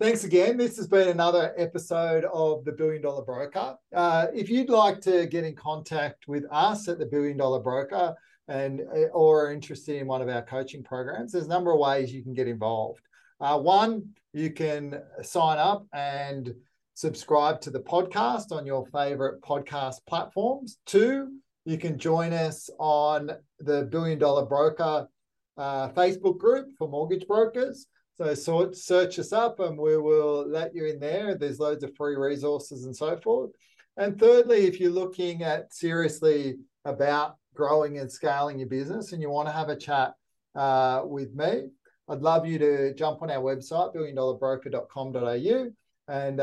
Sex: male